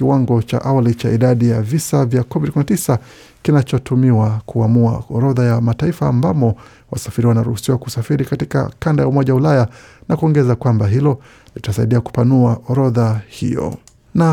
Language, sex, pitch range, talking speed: Swahili, male, 120-140 Hz, 135 wpm